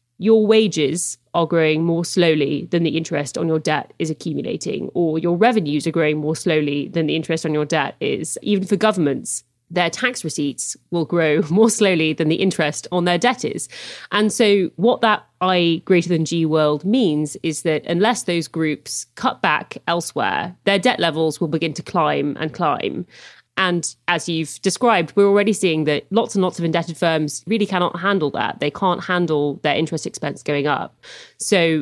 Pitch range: 155-190 Hz